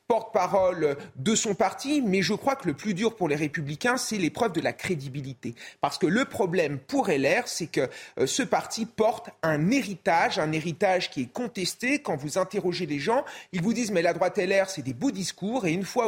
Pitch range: 160-230 Hz